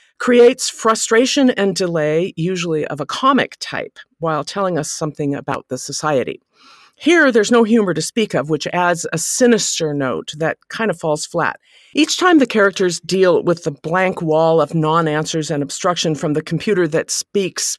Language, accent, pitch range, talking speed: English, American, 160-225 Hz, 170 wpm